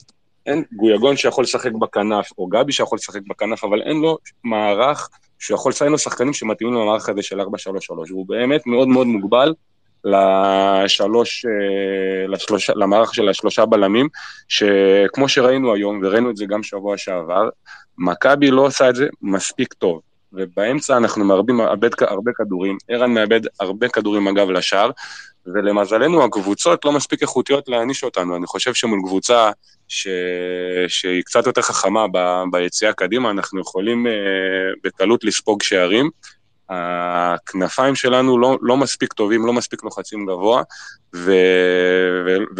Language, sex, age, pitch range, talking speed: Hebrew, male, 20-39, 95-120 Hz, 140 wpm